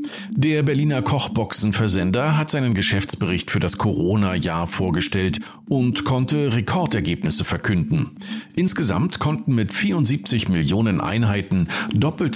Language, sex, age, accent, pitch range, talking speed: German, male, 50-69, German, 100-150 Hz, 100 wpm